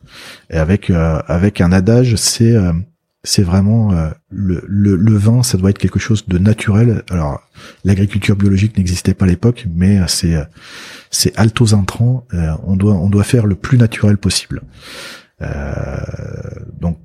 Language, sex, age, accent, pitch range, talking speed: French, male, 40-59, French, 80-105 Hz, 160 wpm